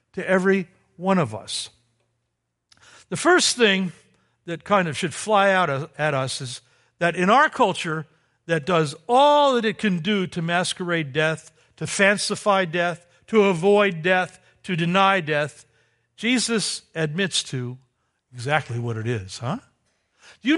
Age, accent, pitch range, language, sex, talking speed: 60-79, American, 150-210 Hz, English, male, 145 wpm